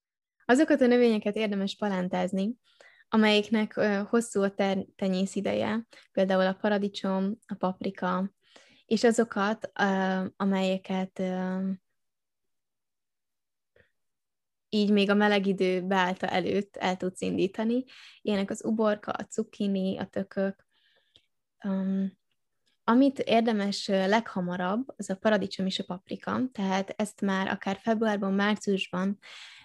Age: 20-39